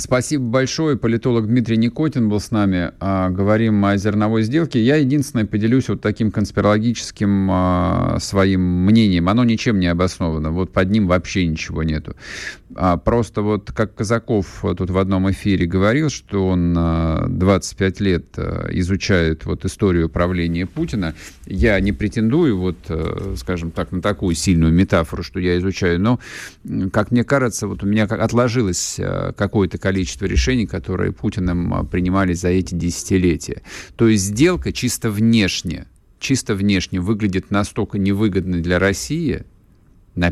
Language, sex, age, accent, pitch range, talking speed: Russian, male, 50-69, native, 90-110 Hz, 135 wpm